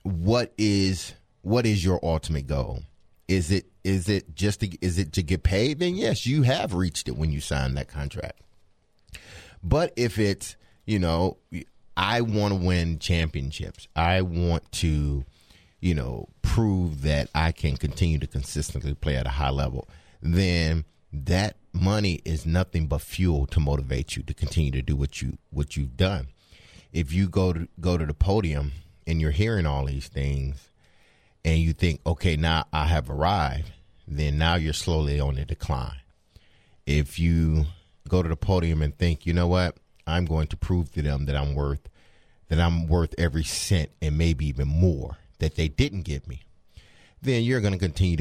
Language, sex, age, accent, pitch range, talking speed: English, male, 30-49, American, 75-95 Hz, 180 wpm